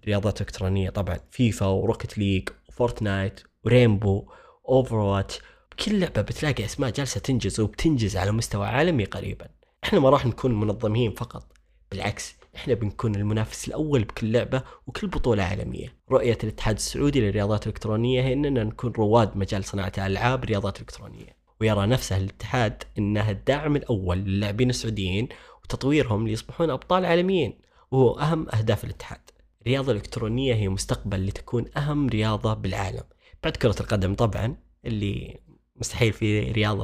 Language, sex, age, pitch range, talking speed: Arabic, male, 20-39, 100-125 Hz, 135 wpm